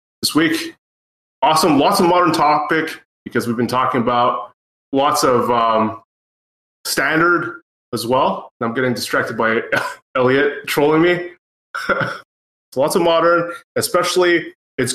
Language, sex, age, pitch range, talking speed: English, male, 20-39, 125-155 Hz, 130 wpm